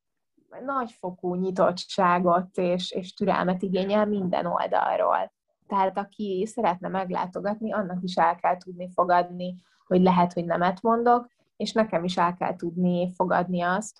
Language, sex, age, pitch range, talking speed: Hungarian, female, 20-39, 180-210 Hz, 135 wpm